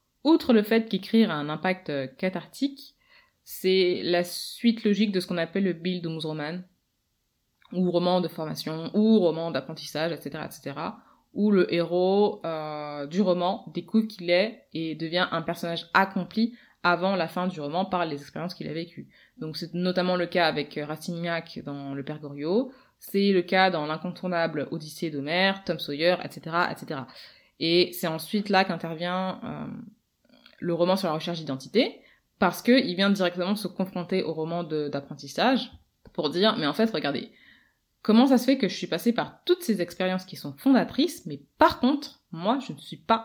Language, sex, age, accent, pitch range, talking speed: French, female, 20-39, French, 165-215 Hz, 175 wpm